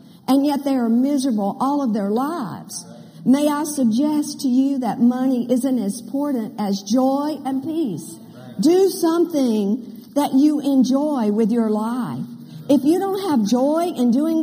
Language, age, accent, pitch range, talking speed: English, 50-69, American, 220-285 Hz, 160 wpm